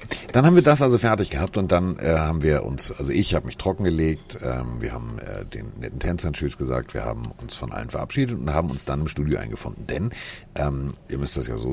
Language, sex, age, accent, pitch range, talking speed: German, male, 50-69, German, 75-95 Hz, 235 wpm